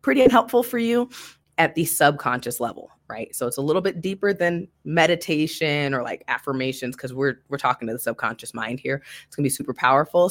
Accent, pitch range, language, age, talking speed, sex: American, 125-165 Hz, English, 20-39, 205 wpm, female